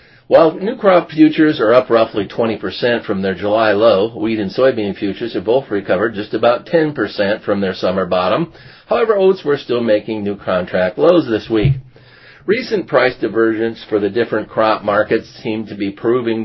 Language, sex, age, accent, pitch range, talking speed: English, male, 50-69, American, 100-130 Hz, 175 wpm